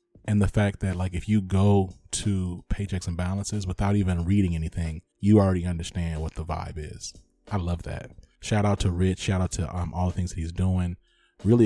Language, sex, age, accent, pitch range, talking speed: English, male, 30-49, American, 90-105 Hz, 205 wpm